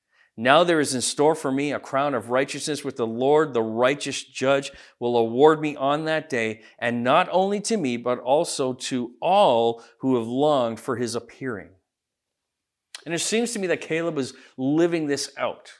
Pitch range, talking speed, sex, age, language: 115-170 Hz, 185 wpm, male, 40-59, English